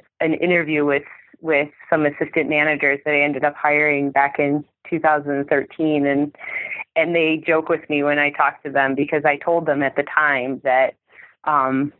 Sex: female